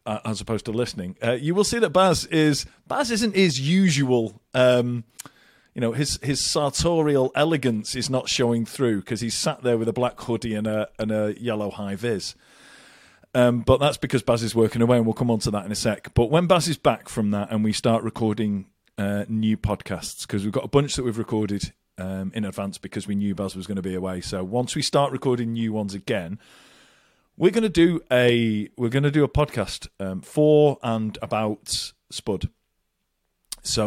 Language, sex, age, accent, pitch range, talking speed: English, male, 40-59, British, 100-130 Hz, 205 wpm